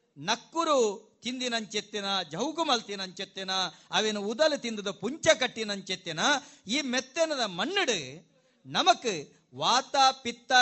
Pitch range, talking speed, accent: 205-270 Hz, 90 wpm, native